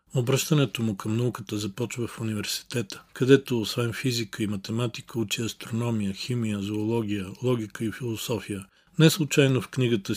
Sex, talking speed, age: male, 135 wpm, 40-59